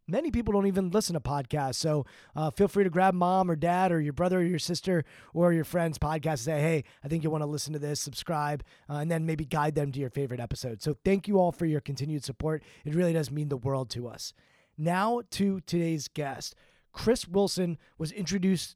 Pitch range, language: 150-180 Hz, English